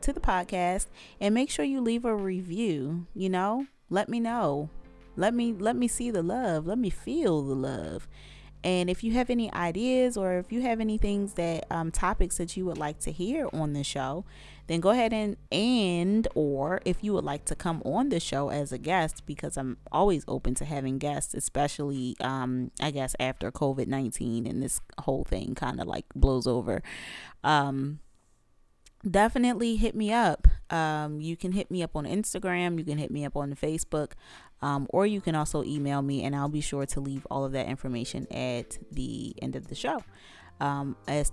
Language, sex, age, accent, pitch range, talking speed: English, female, 30-49, American, 140-190 Hz, 200 wpm